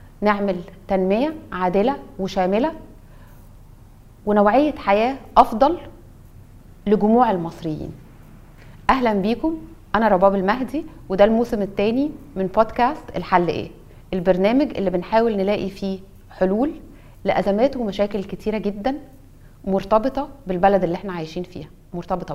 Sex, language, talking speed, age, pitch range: female, Arabic, 100 wpm, 30-49, 180-220 Hz